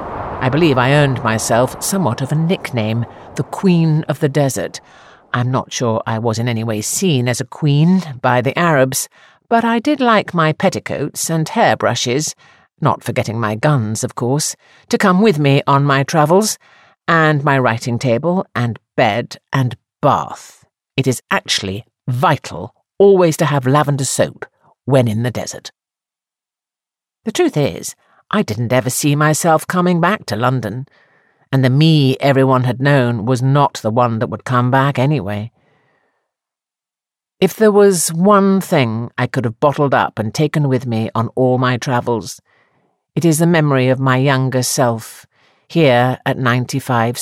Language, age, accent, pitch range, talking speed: English, 50-69, British, 120-150 Hz, 160 wpm